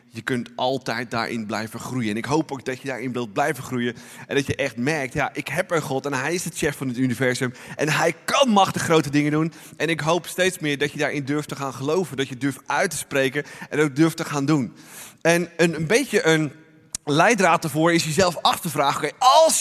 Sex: male